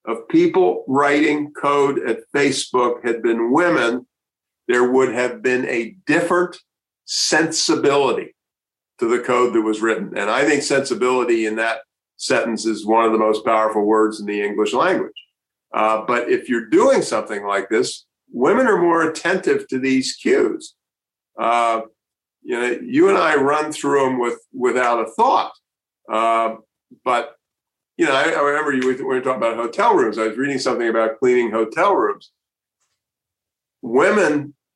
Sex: male